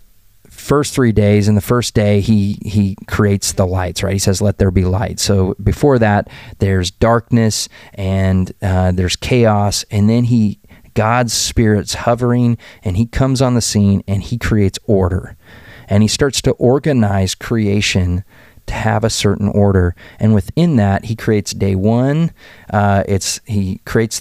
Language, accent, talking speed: English, American, 165 wpm